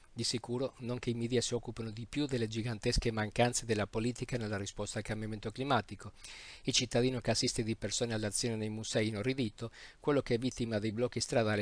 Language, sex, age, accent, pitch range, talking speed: Italian, male, 50-69, native, 105-125 Hz, 190 wpm